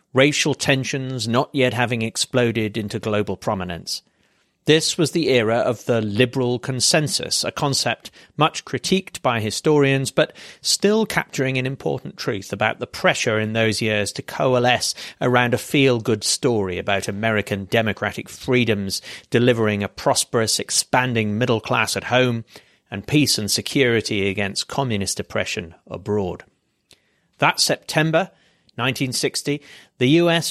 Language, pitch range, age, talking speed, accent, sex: English, 110-135 Hz, 40-59, 130 wpm, British, male